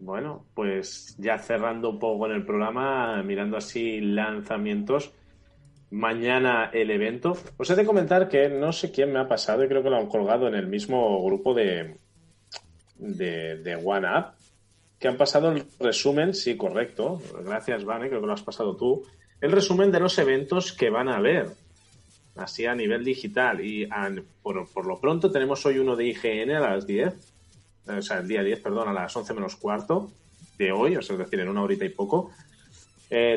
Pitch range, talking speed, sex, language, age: 105-170 Hz, 190 wpm, male, Spanish, 30-49